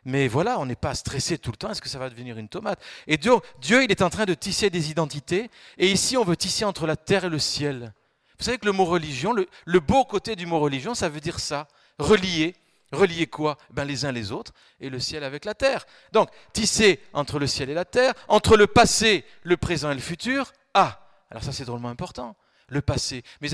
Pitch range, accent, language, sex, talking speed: 150-200 Hz, French, French, male, 250 wpm